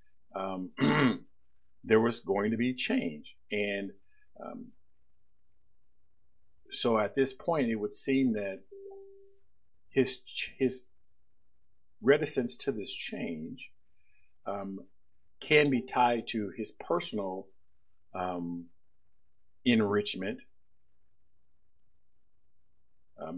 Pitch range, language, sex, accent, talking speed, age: 90-120 Hz, English, male, American, 85 wpm, 50-69